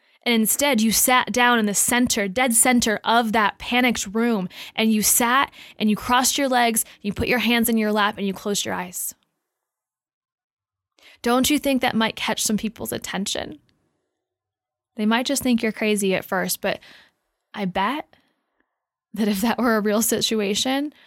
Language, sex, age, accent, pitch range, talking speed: English, female, 10-29, American, 195-230 Hz, 175 wpm